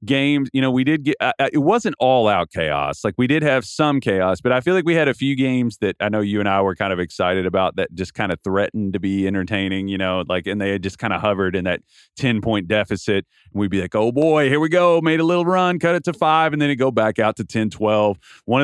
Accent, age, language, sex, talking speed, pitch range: American, 30-49, English, male, 280 wpm, 95-130 Hz